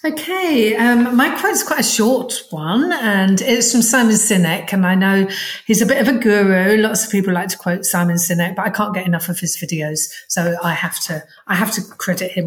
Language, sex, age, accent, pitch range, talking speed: English, female, 50-69, British, 185-245 Hz, 225 wpm